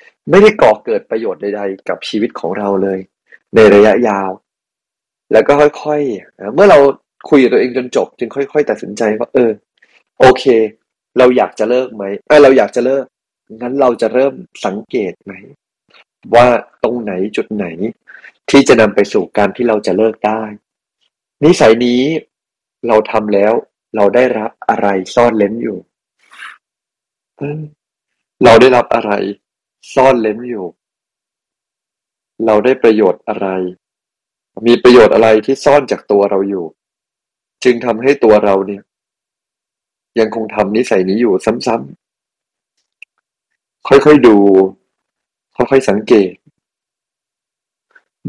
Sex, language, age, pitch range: male, Thai, 20-39, 105-135 Hz